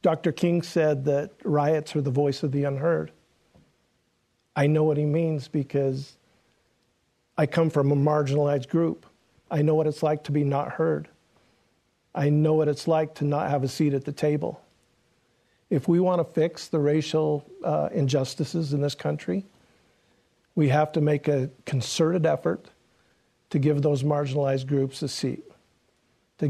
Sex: male